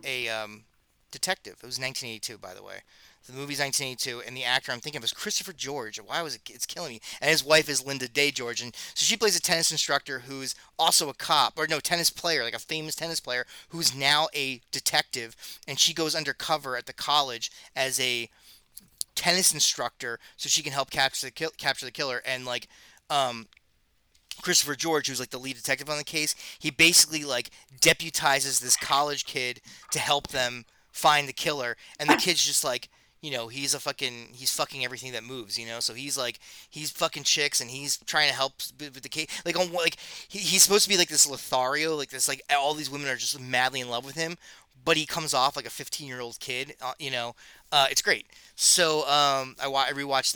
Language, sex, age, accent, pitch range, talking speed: English, male, 30-49, American, 125-155 Hz, 220 wpm